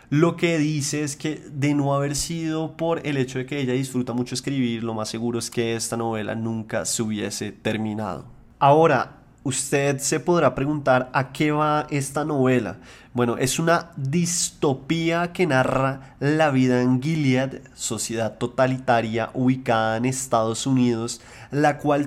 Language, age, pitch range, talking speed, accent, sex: Spanish, 20-39, 120-145 Hz, 155 wpm, Colombian, male